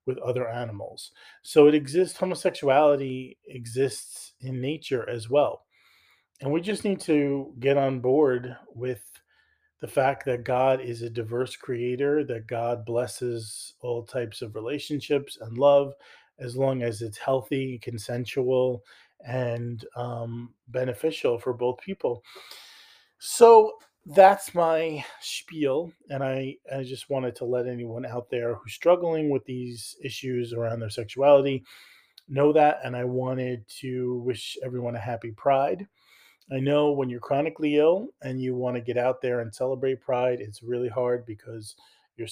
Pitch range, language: 120-140 Hz, English